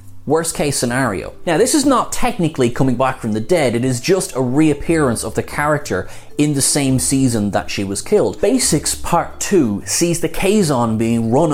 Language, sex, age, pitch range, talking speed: English, male, 20-39, 110-150 Hz, 190 wpm